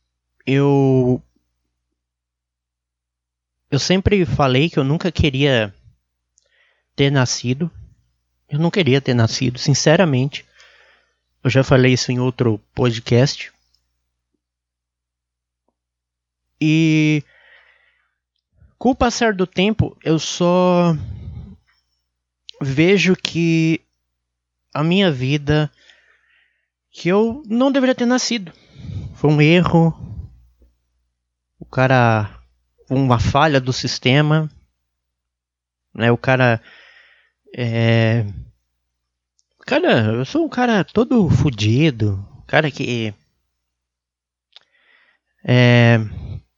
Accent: Brazilian